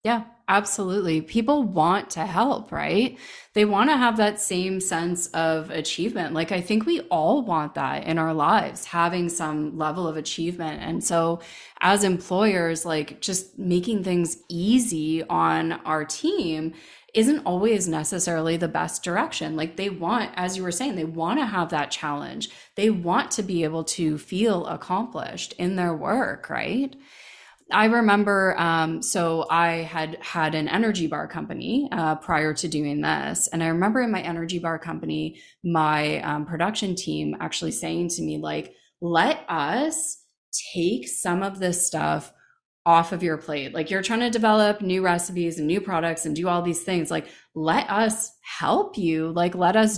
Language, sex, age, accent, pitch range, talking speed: English, female, 20-39, American, 160-205 Hz, 170 wpm